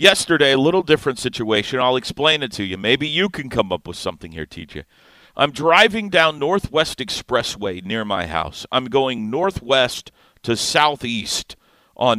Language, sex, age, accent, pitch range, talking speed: English, male, 50-69, American, 115-155 Hz, 160 wpm